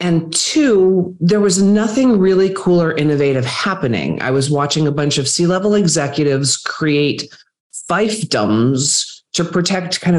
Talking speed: 135 wpm